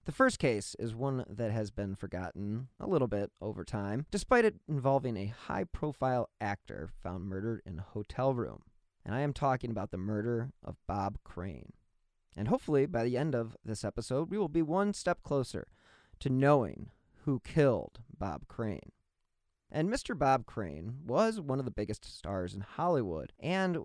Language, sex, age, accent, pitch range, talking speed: English, male, 30-49, American, 110-150 Hz, 175 wpm